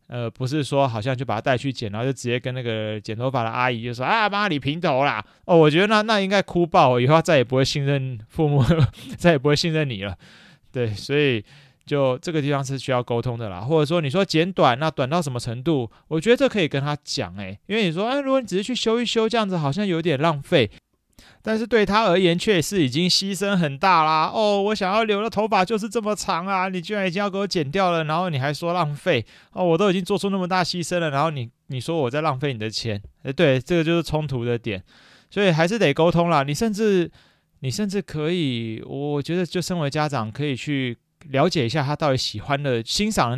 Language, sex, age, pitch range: Chinese, male, 30-49, 130-180 Hz